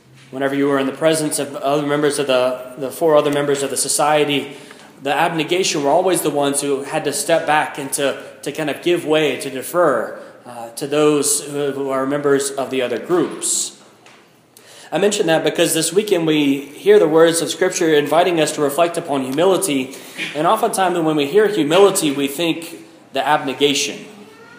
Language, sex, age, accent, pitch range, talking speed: English, male, 30-49, American, 140-180 Hz, 185 wpm